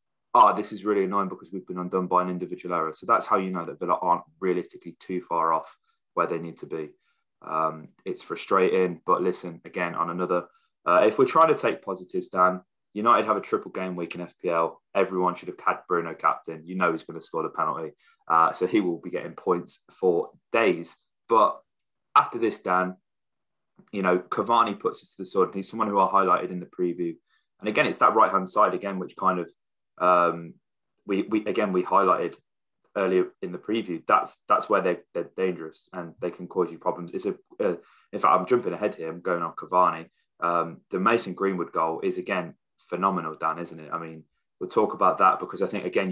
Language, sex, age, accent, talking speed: English, male, 20-39, British, 210 wpm